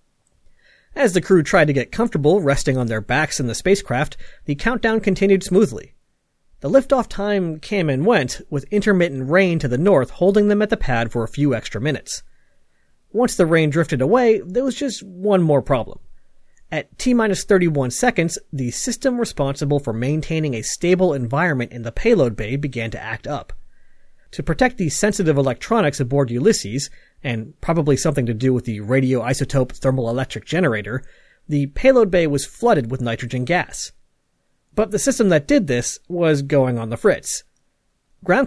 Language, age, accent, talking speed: English, 40-59, American, 165 wpm